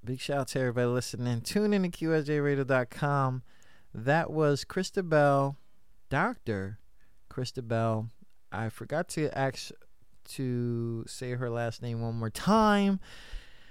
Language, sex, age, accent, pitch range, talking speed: English, male, 20-39, American, 125-160 Hz, 125 wpm